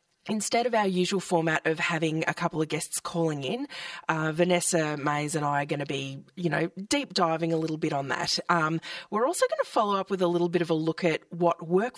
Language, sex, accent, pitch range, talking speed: English, female, Australian, 160-185 Hz, 240 wpm